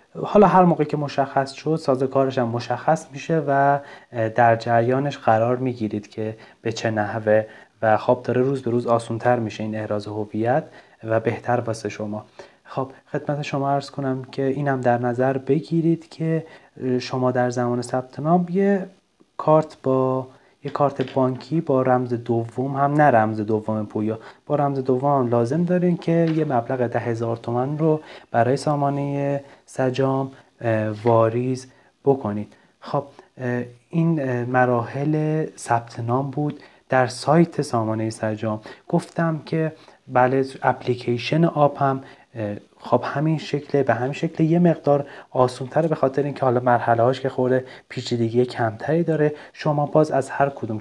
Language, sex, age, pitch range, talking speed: Persian, male, 30-49, 115-145 Hz, 145 wpm